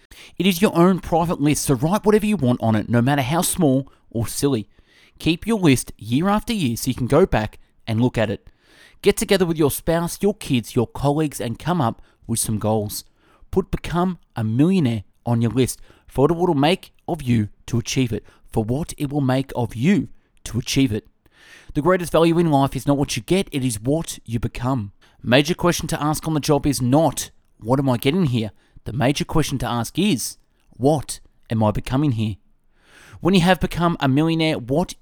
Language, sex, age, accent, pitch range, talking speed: English, male, 30-49, Australian, 115-165 Hz, 210 wpm